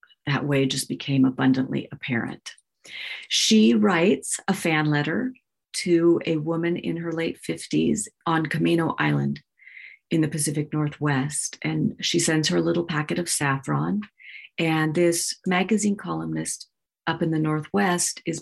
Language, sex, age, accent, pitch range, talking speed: English, female, 40-59, American, 140-170 Hz, 140 wpm